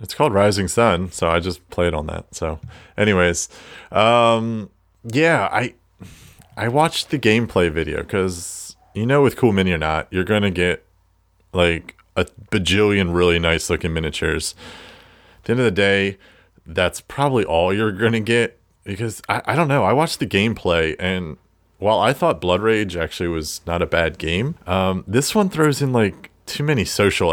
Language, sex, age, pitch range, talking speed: English, male, 30-49, 85-105 Hz, 180 wpm